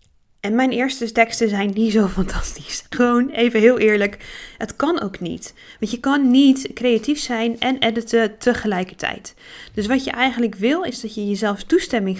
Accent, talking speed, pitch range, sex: Dutch, 170 wpm, 200-245 Hz, female